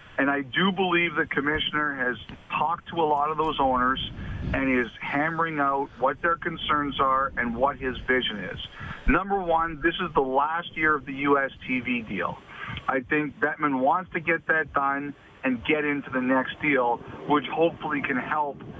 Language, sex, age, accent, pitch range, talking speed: English, male, 50-69, American, 135-160 Hz, 180 wpm